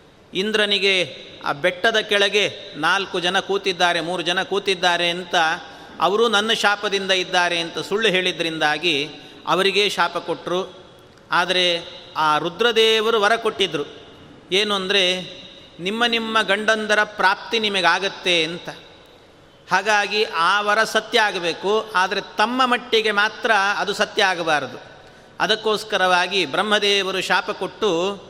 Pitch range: 180-215 Hz